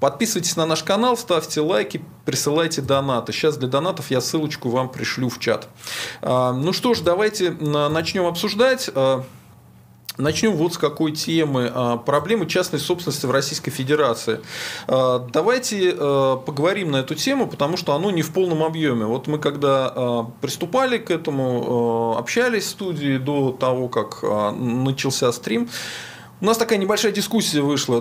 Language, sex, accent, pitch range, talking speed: Russian, male, native, 135-180 Hz, 140 wpm